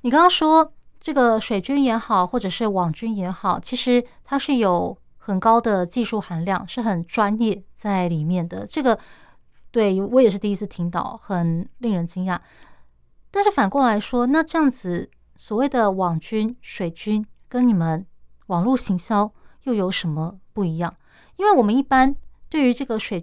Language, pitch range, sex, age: Chinese, 185-240 Hz, female, 20-39